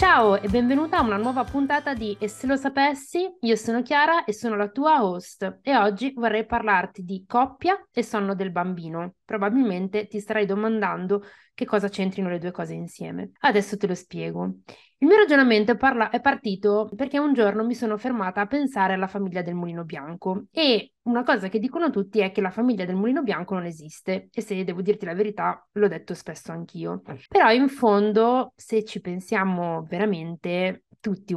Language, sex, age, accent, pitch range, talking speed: Italian, female, 30-49, native, 190-245 Hz, 185 wpm